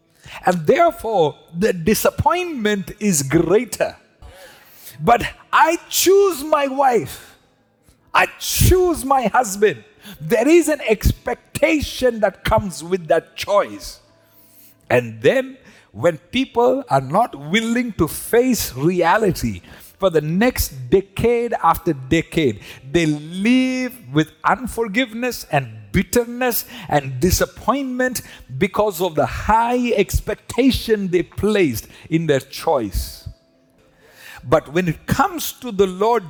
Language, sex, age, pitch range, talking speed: English, male, 50-69, 160-255 Hz, 105 wpm